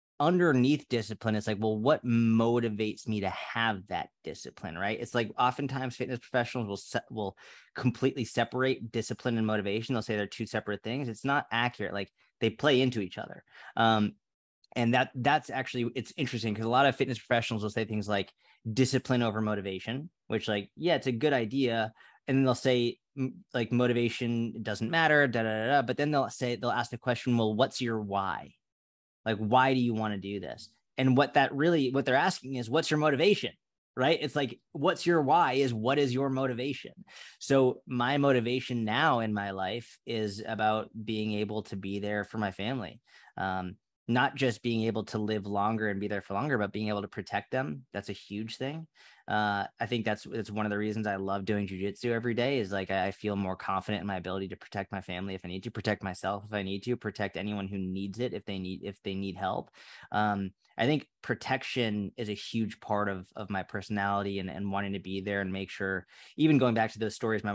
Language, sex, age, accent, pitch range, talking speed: English, male, 20-39, American, 100-125 Hz, 215 wpm